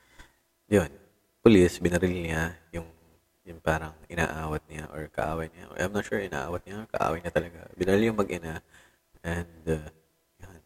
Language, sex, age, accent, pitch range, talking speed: Filipino, male, 20-39, native, 80-90 Hz, 145 wpm